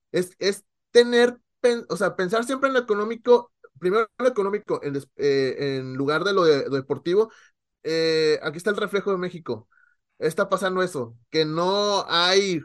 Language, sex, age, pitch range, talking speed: English, male, 30-49, 145-205 Hz, 175 wpm